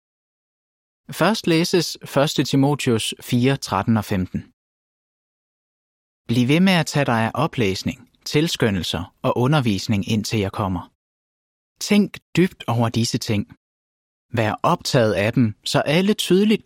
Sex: male